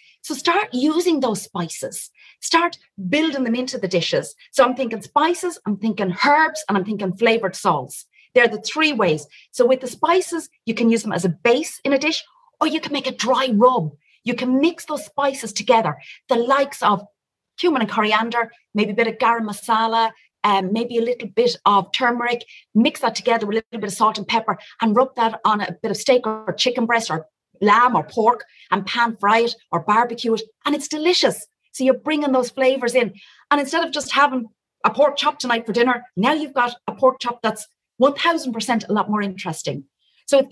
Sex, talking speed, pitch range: female, 205 wpm, 210-280 Hz